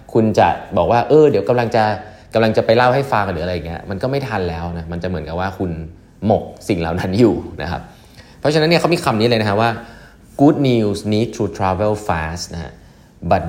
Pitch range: 90-115 Hz